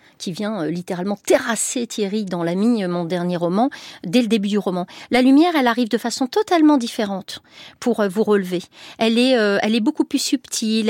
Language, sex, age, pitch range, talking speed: French, female, 40-59, 195-250 Hz, 195 wpm